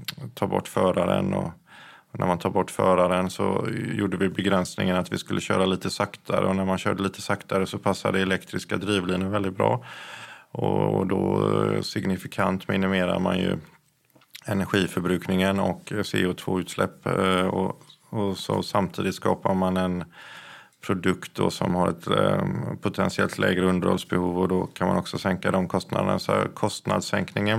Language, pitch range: Swedish, 90-100 Hz